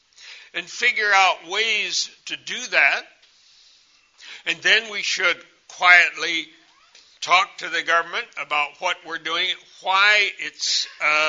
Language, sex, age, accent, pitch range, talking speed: English, male, 60-79, American, 160-200 Hz, 120 wpm